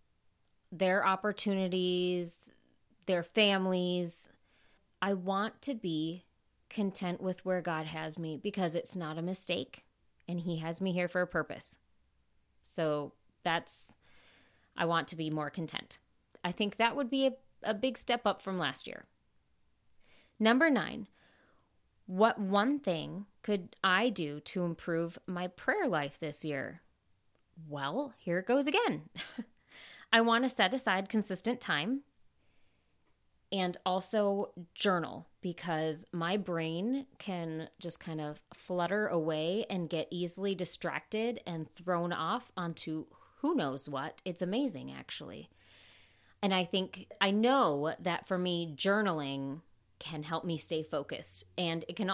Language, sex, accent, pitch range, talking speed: English, female, American, 160-200 Hz, 135 wpm